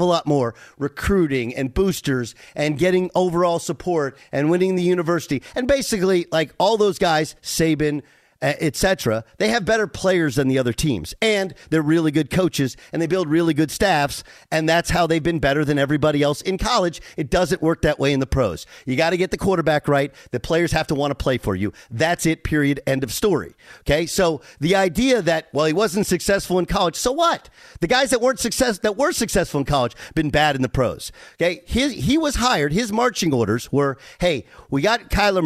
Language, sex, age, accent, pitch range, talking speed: English, male, 50-69, American, 150-200 Hz, 205 wpm